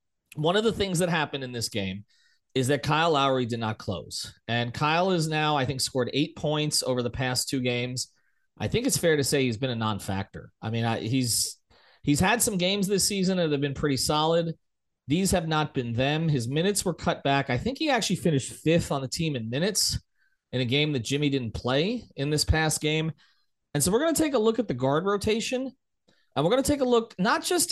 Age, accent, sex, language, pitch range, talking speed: 30-49, American, male, English, 125-180 Hz, 230 wpm